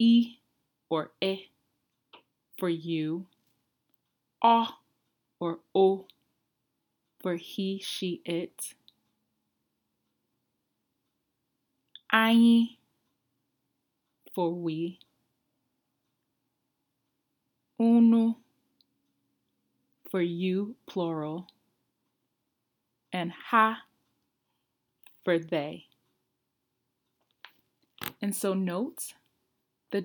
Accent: American